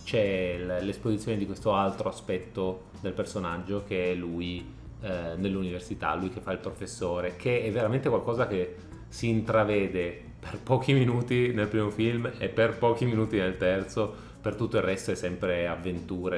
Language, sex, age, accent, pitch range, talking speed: Italian, male, 30-49, native, 95-120 Hz, 160 wpm